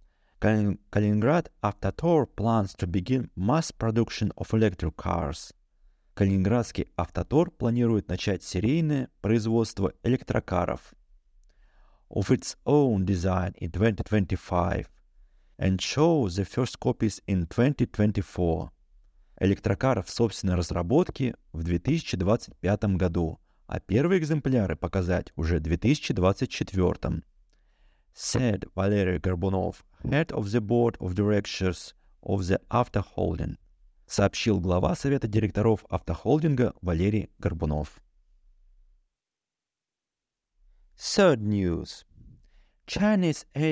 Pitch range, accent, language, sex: 90-120 Hz, native, Russian, male